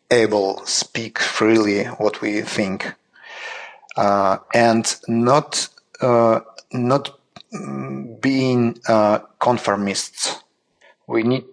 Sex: male